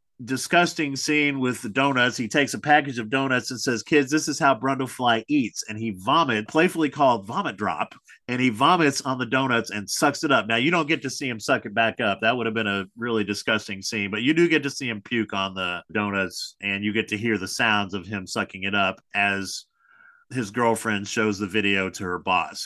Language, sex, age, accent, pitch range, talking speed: English, male, 40-59, American, 105-140 Hz, 230 wpm